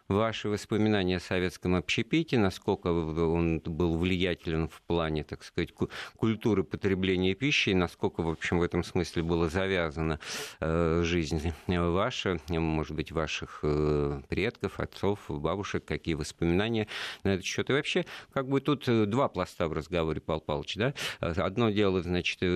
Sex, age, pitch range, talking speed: male, 50-69, 80-105 Hz, 140 wpm